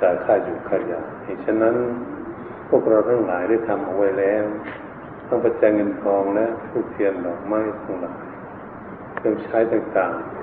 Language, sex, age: Thai, male, 60-79